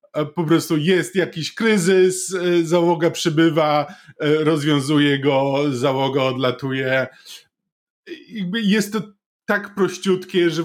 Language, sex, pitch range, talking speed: Polish, male, 140-170 Hz, 90 wpm